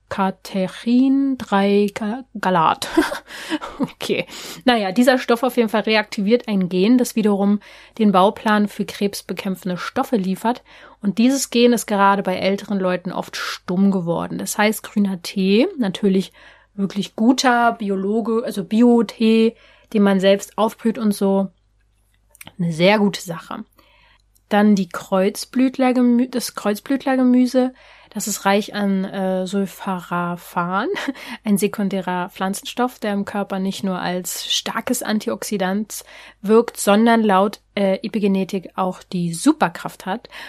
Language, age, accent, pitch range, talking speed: German, 30-49, German, 190-230 Hz, 125 wpm